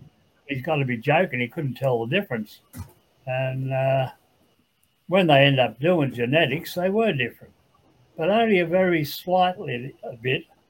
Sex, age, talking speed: male, 60-79, 155 wpm